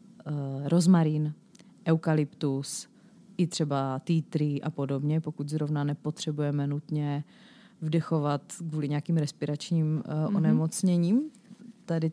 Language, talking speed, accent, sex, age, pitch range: Czech, 90 wpm, native, female, 30-49, 150-185 Hz